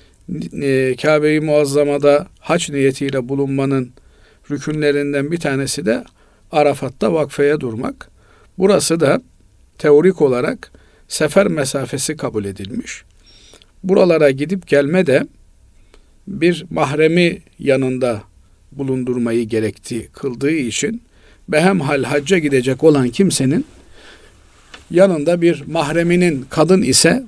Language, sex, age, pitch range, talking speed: Turkish, male, 50-69, 135-170 Hz, 90 wpm